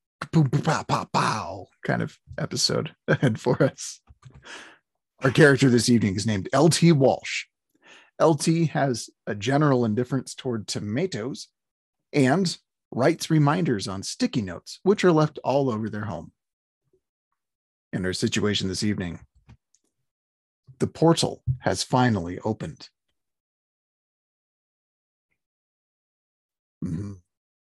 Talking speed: 95 wpm